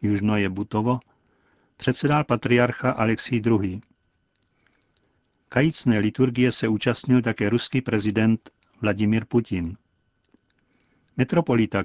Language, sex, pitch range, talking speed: Czech, male, 110-130 Hz, 70 wpm